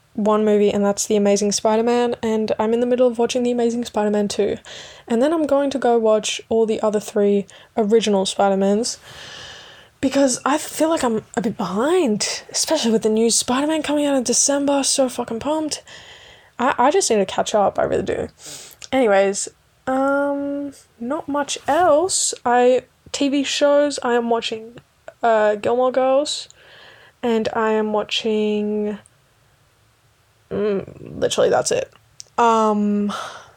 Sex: female